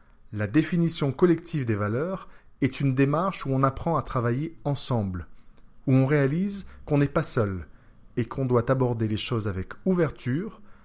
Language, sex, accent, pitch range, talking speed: French, male, French, 115-155 Hz, 160 wpm